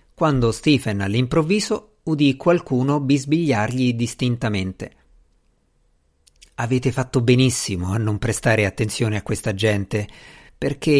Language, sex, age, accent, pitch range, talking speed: Italian, male, 50-69, native, 110-155 Hz, 100 wpm